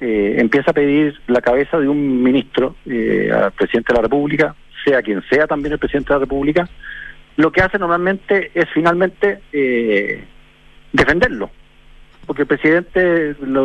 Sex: male